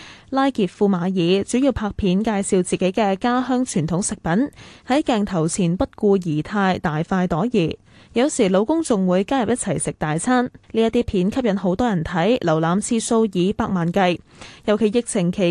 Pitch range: 180-240 Hz